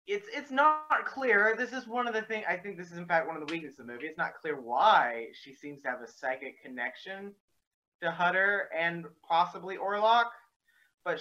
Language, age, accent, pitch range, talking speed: English, 30-49, American, 130-185 Hz, 215 wpm